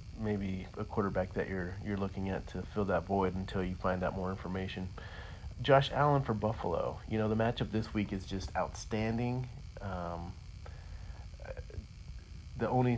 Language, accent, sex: English, American, male